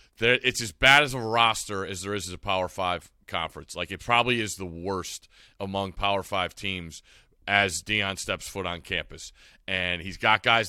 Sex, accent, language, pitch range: male, American, English, 100-125 Hz